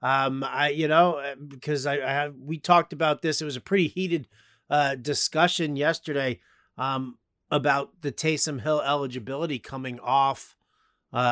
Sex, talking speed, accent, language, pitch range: male, 155 wpm, American, English, 140-170 Hz